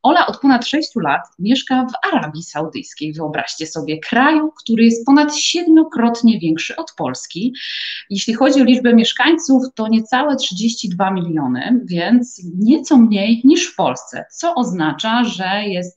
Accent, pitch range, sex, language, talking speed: native, 180-250 Hz, female, Polish, 145 wpm